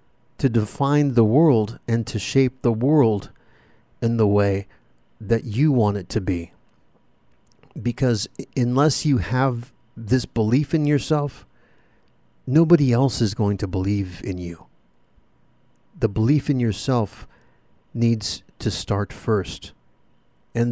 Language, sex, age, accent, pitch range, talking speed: English, male, 50-69, American, 110-135 Hz, 125 wpm